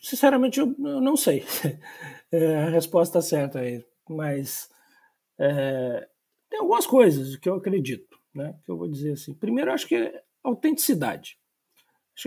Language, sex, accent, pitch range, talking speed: Portuguese, male, Brazilian, 155-225 Hz, 145 wpm